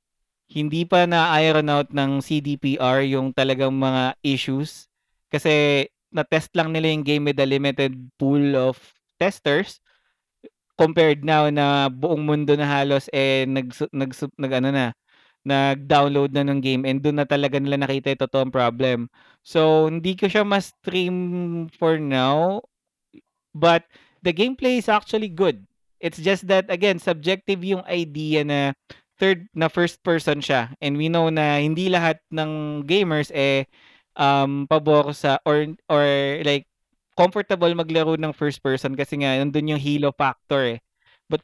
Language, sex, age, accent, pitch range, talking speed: Filipino, male, 20-39, native, 140-170 Hz, 150 wpm